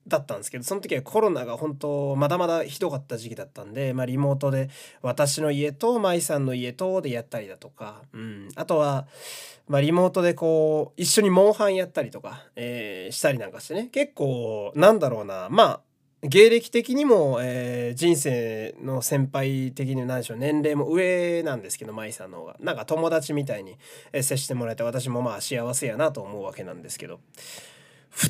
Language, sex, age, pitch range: Japanese, male, 20-39, 125-190 Hz